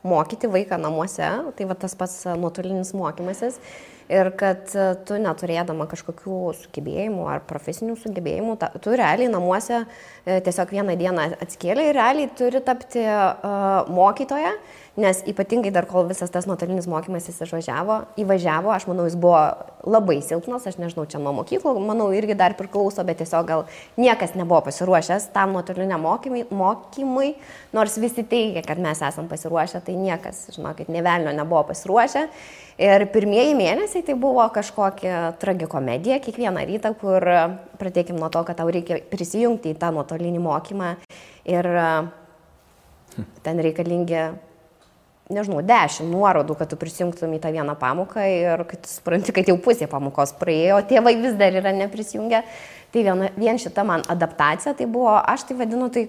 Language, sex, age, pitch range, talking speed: English, female, 20-39, 170-220 Hz, 145 wpm